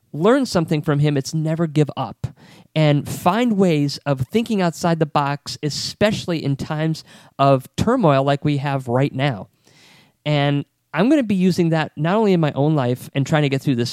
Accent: American